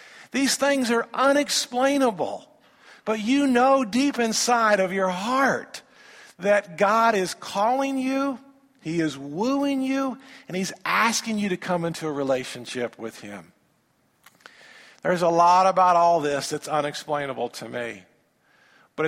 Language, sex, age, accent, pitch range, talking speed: English, male, 50-69, American, 135-210 Hz, 135 wpm